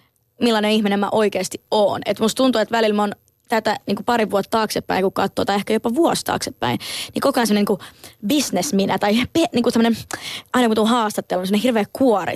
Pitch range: 200-235 Hz